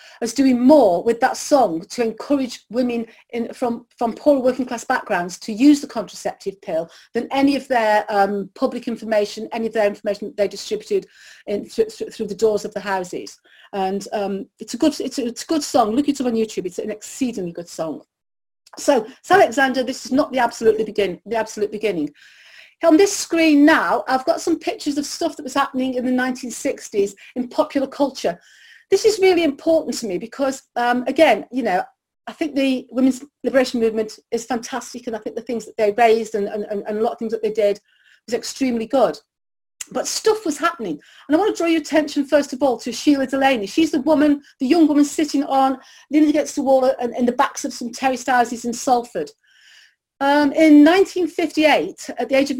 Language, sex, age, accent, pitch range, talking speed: English, female, 40-59, British, 225-295 Hz, 210 wpm